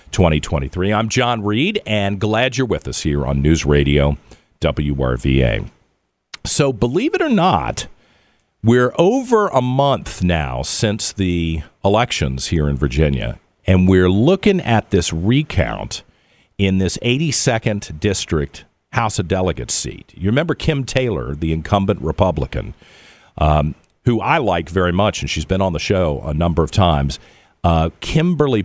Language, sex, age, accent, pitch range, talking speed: English, male, 50-69, American, 80-120 Hz, 145 wpm